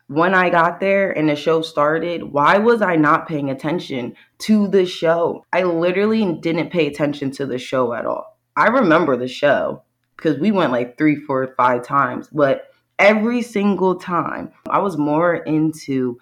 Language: English